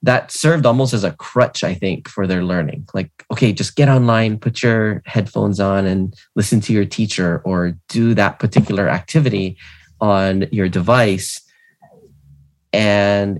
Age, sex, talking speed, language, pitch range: 20-39, male, 150 wpm, English, 95-120 Hz